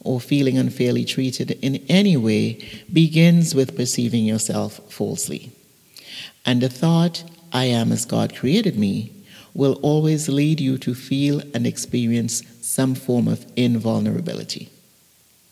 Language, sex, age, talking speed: English, male, 50-69, 130 wpm